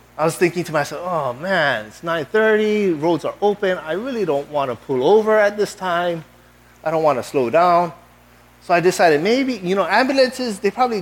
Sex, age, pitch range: male, 30-49, 120-180 Hz